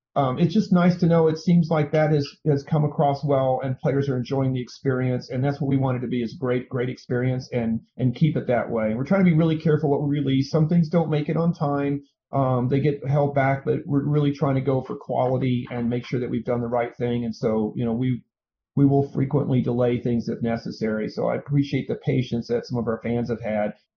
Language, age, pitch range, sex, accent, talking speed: English, 40-59, 125-150 Hz, male, American, 250 wpm